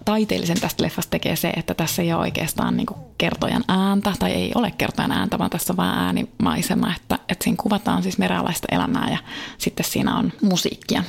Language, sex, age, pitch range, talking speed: Finnish, female, 20-39, 175-225 Hz, 190 wpm